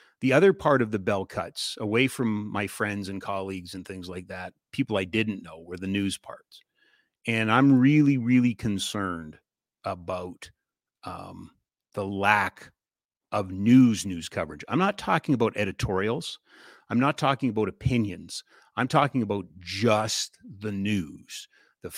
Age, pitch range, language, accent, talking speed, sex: 40-59, 95-120 Hz, English, American, 150 wpm, male